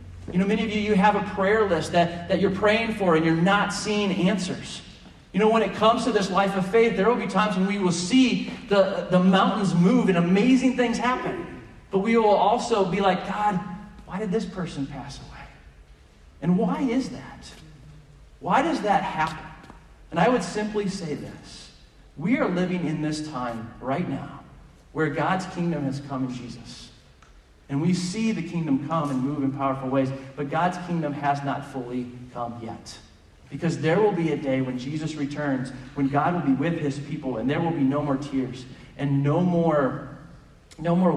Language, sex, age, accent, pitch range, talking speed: English, male, 40-59, American, 140-195 Hz, 195 wpm